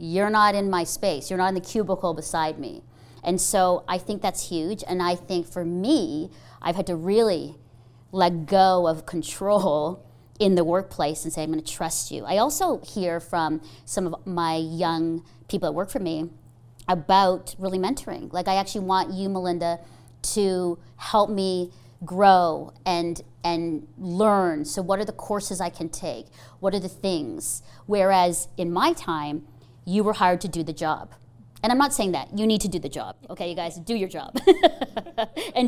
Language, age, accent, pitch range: English, 40-59, American, 165-210 Hz